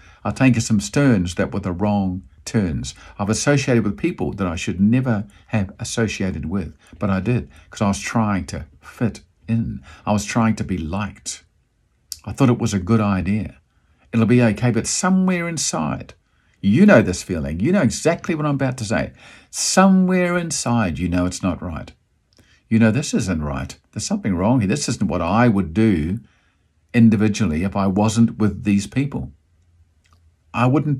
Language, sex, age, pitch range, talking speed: English, male, 50-69, 85-120 Hz, 180 wpm